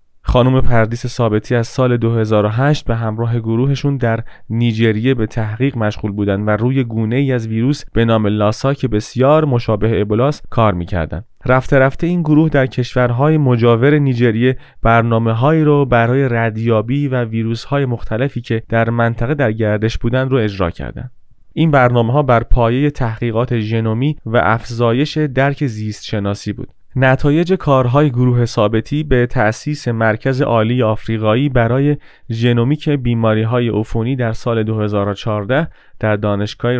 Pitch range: 110-135 Hz